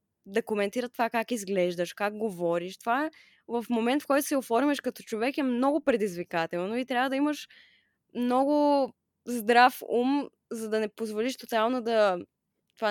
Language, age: Bulgarian, 20-39